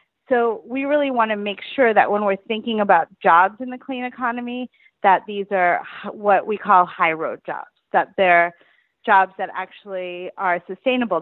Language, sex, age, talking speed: English, female, 30-49, 175 wpm